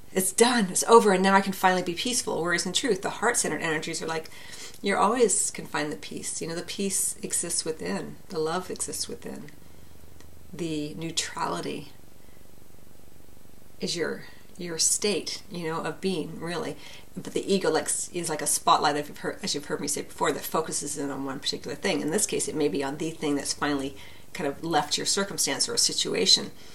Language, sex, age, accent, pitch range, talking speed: English, female, 40-59, American, 150-210 Hz, 200 wpm